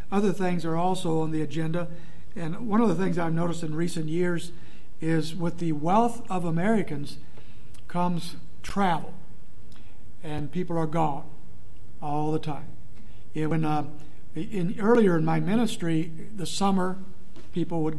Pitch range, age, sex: 150-175 Hz, 60-79, male